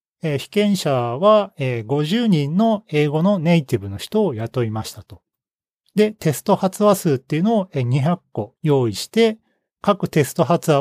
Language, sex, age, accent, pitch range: Japanese, male, 40-59, native, 135-200 Hz